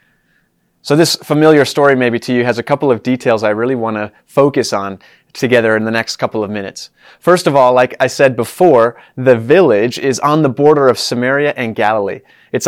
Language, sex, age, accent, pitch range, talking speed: English, male, 30-49, American, 125-155 Hz, 205 wpm